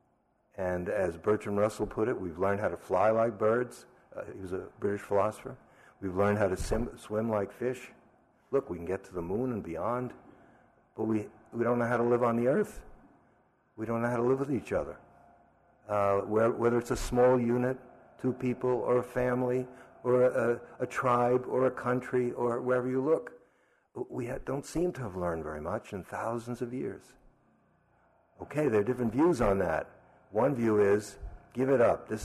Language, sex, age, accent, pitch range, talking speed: English, male, 60-79, American, 100-125 Hz, 195 wpm